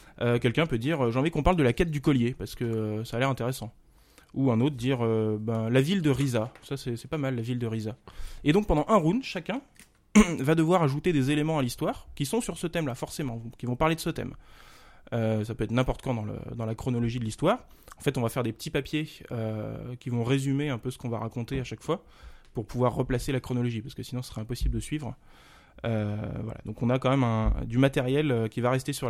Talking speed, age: 265 wpm, 20-39